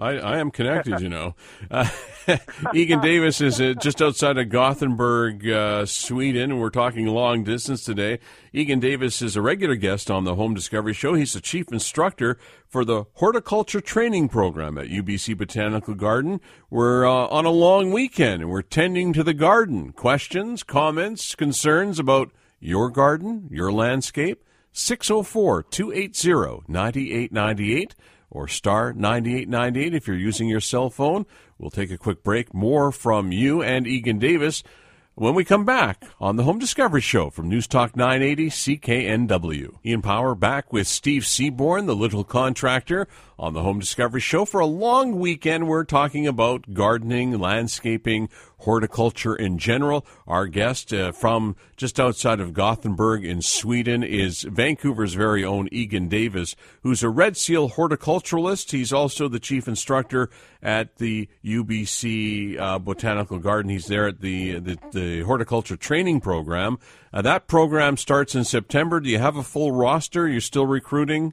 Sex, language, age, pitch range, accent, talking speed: male, English, 50-69, 105-145 Hz, American, 155 wpm